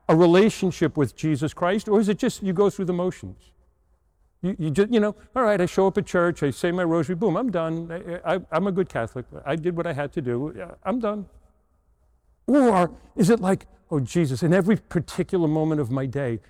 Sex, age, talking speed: male, 50-69, 220 wpm